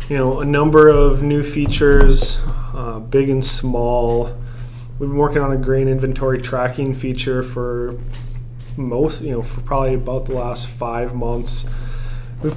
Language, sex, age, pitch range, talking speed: English, male, 20-39, 120-145 Hz, 155 wpm